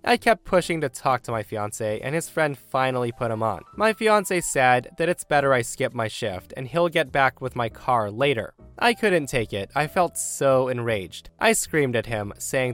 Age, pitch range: 20-39, 115-160 Hz